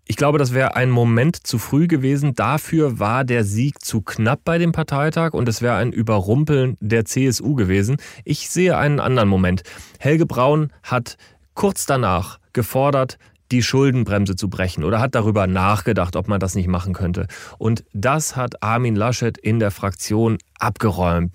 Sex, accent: male, German